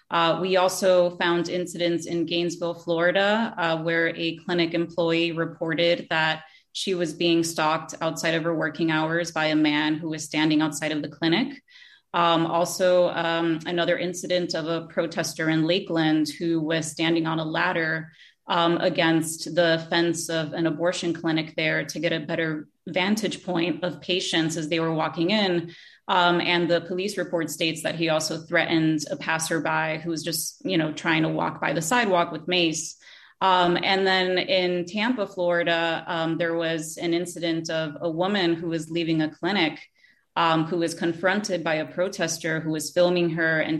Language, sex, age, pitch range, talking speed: English, female, 30-49, 160-175 Hz, 175 wpm